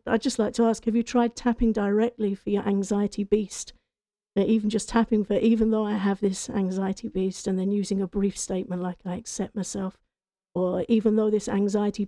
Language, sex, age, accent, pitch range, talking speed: English, female, 50-69, British, 200-225 Hz, 200 wpm